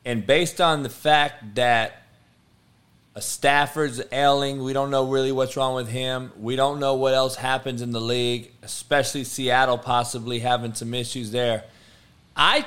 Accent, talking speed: American, 160 wpm